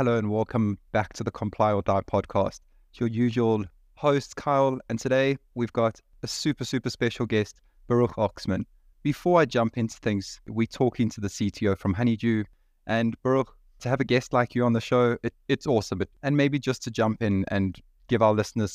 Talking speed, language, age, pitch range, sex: 200 wpm, English, 20-39, 100-120 Hz, male